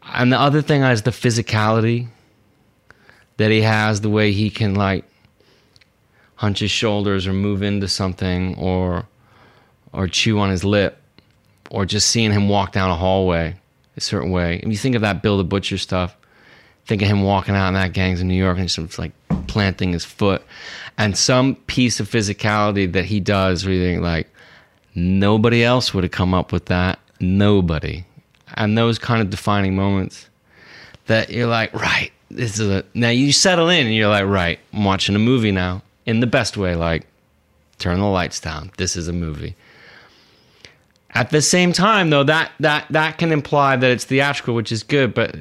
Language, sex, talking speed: English, male, 190 wpm